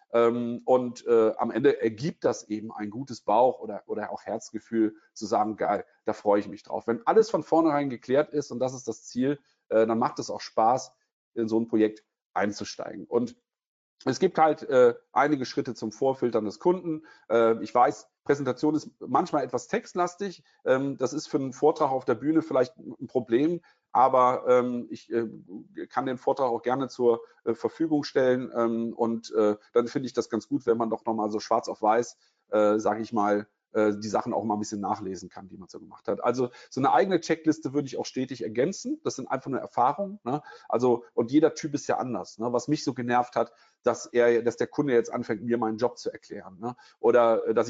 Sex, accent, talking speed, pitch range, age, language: male, German, 210 wpm, 115-145 Hz, 40-59, German